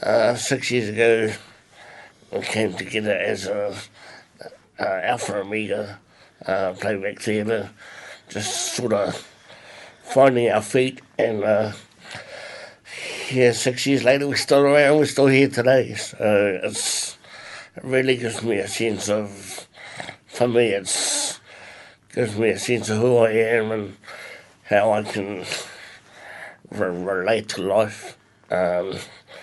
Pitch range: 100-120 Hz